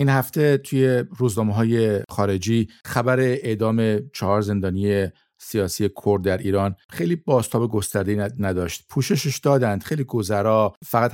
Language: Persian